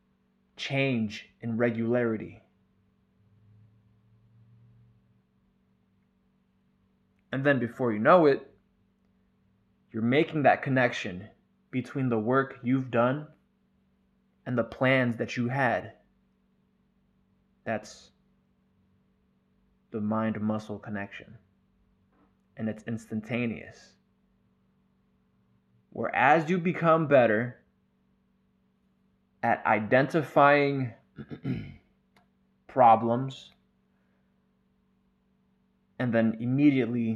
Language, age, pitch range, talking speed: English, 20-39, 105-130 Hz, 70 wpm